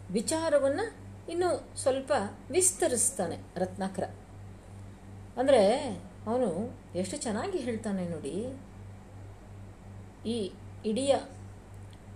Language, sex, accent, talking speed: Kannada, female, native, 65 wpm